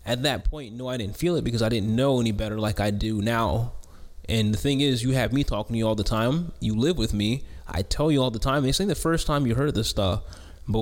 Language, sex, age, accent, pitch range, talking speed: English, male, 20-39, American, 100-130 Hz, 285 wpm